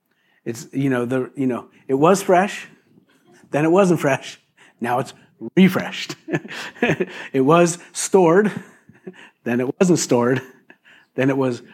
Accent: American